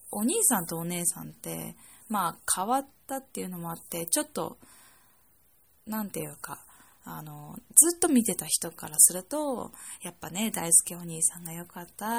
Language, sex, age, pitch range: Japanese, female, 20-39, 170-250 Hz